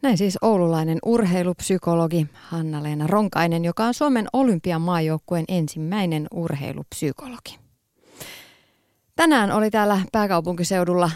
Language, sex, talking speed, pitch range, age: Finnish, female, 90 wpm, 160-205 Hz, 30-49